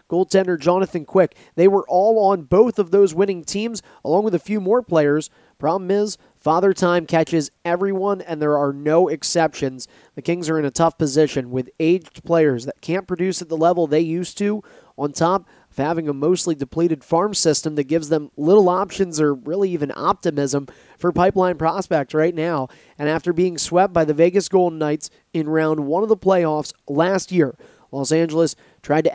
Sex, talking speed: male, 190 wpm